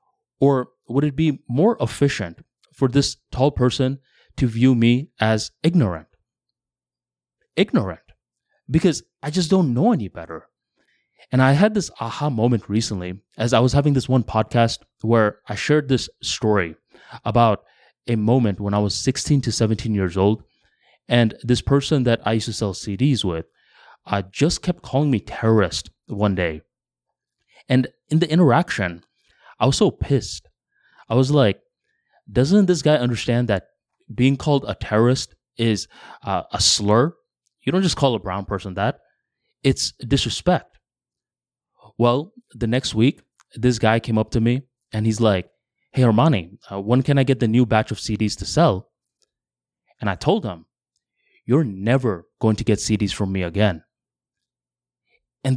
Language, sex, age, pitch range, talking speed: English, male, 20-39, 105-135 Hz, 160 wpm